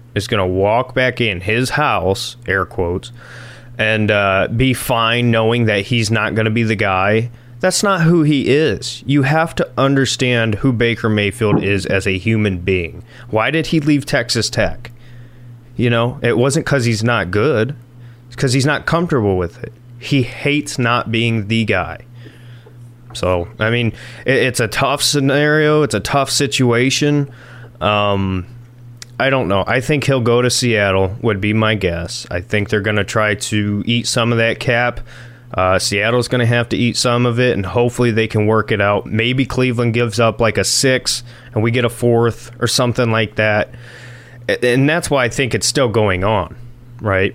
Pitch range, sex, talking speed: 110-125 Hz, male, 185 wpm